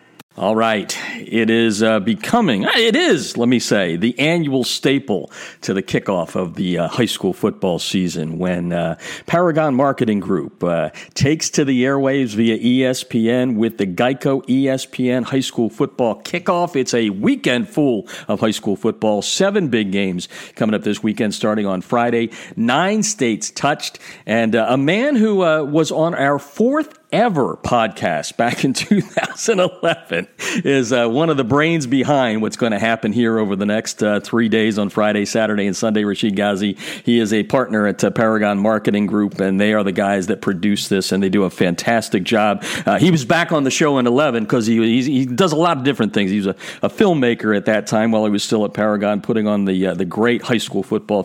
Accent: American